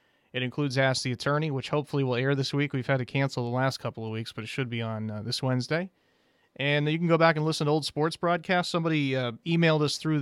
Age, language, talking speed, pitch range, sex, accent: 30-49, English, 260 wpm, 125-155 Hz, male, American